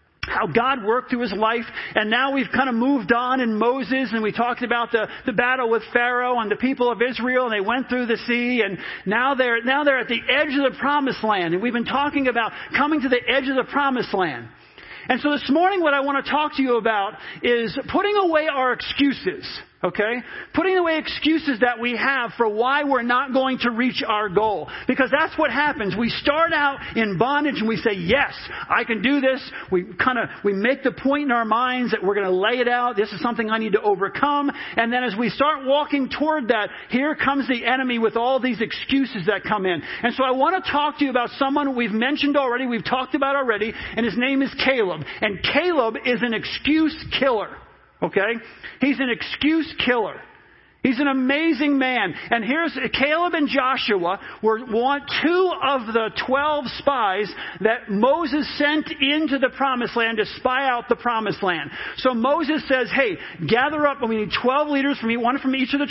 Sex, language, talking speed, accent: male, English, 210 wpm, American